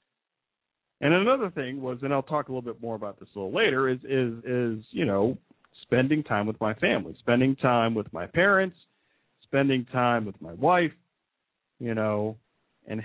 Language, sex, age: English, male, 50-69